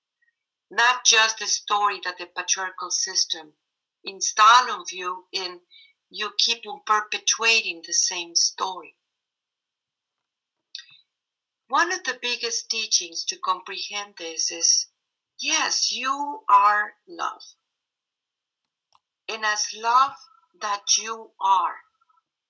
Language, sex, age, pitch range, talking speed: English, female, 50-69, 200-335 Hz, 100 wpm